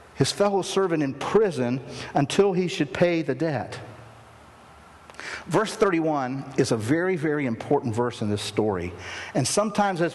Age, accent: 50-69, American